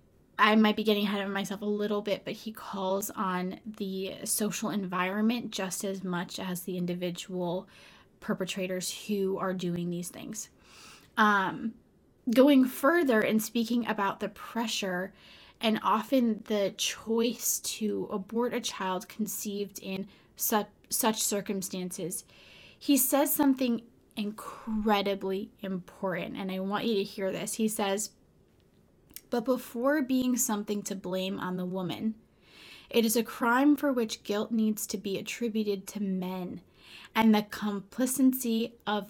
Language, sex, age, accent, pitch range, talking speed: English, female, 10-29, American, 190-230 Hz, 135 wpm